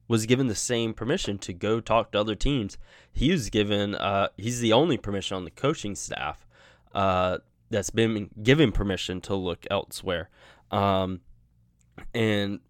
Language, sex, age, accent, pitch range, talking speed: English, male, 20-39, American, 95-115 Hz, 155 wpm